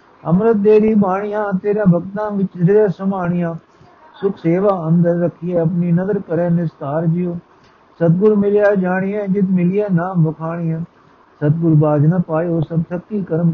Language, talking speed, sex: Punjabi, 130 wpm, male